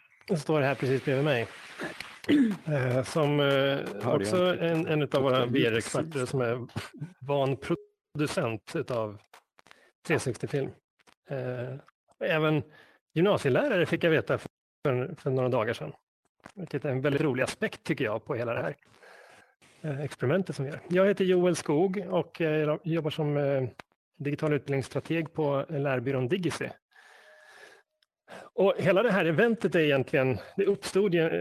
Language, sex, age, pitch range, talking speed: Swedish, male, 30-49, 135-175 Hz, 125 wpm